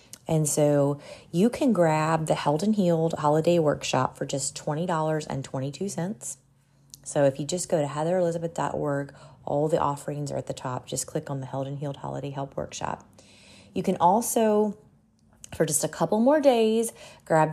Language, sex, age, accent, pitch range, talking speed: English, female, 30-49, American, 140-170 Hz, 165 wpm